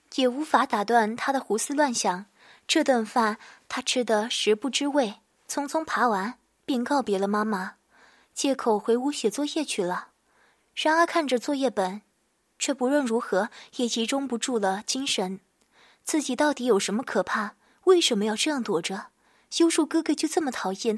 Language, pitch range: Chinese, 220-290 Hz